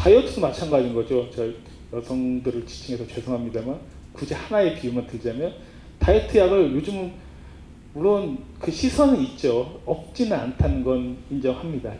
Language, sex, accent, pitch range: Korean, male, native, 120-185 Hz